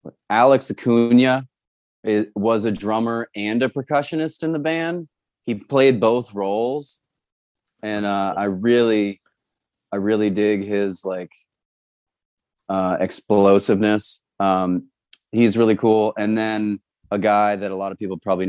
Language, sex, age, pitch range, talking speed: English, male, 30-49, 90-105 Hz, 130 wpm